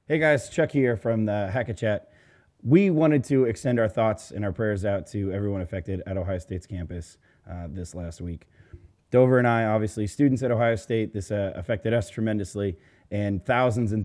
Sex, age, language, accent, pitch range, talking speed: male, 30-49, English, American, 95-115 Hz, 190 wpm